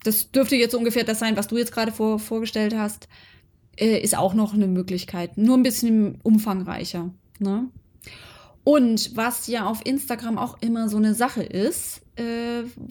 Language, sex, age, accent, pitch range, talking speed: German, female, 20-39, German, 205-240 Hz, 165 wpm